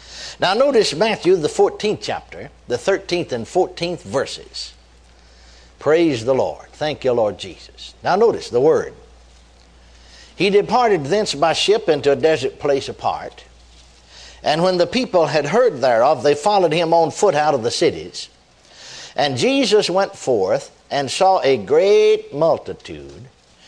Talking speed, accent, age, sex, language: 145 wpm, American, 60-79, male, English